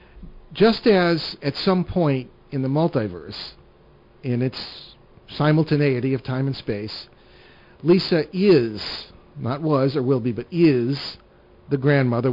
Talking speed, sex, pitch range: 125 wpm, male, 120-155 Hz